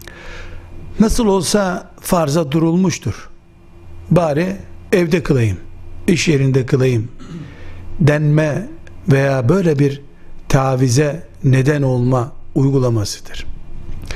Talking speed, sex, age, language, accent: 75 wpm, male, 60-79, Turkish, native